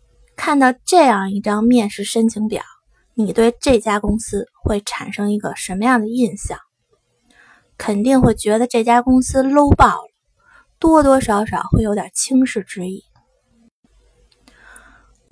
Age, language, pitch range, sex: 20-39, Chinese, 215-270 Hz, female